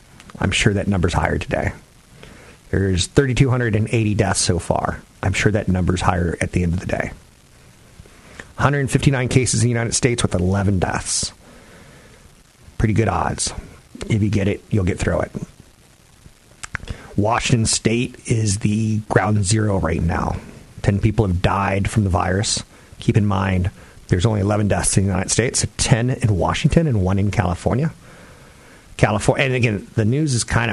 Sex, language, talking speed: male, English, 160 wpm